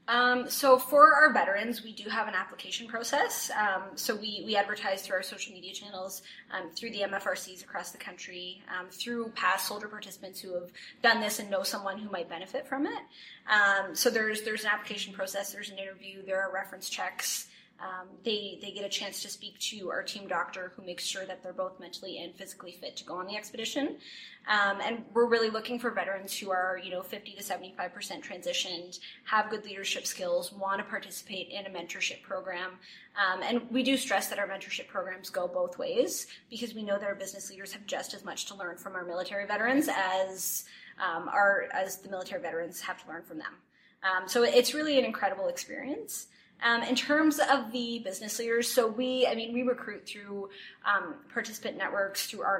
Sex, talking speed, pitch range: female, 205 wpm, 190-230 Hz